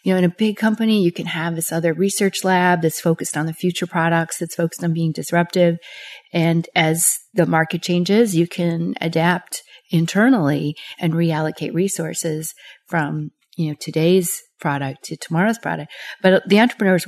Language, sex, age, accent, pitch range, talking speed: English, female, 40-59, American, 165-205 Hz, 165 wpm